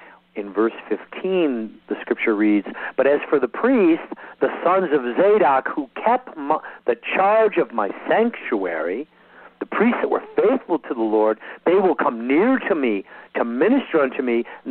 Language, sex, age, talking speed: English, male, 50-69, 165 wpm